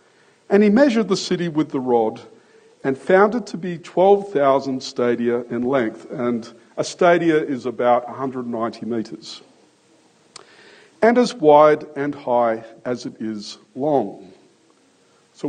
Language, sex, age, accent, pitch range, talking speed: English, male, 50-69, Australian, 125-205 Hz, 130 wpm